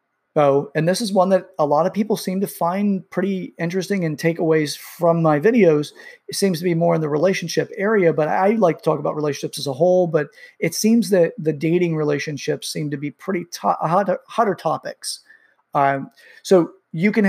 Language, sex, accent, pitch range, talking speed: English, male, American, 145-185 Hz, 200 wpm